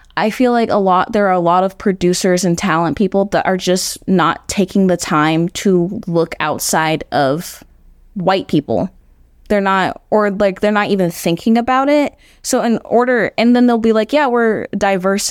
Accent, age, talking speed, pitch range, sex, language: American, 20-39, 190 wpm, 155-210 Hz, female, English